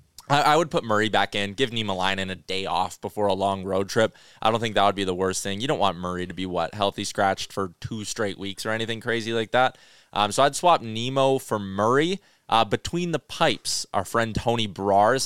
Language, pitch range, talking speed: English, 100-135 Hz, 230 wpm